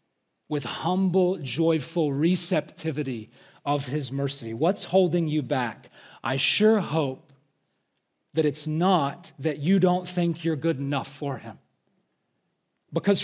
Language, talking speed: English, 120 wpm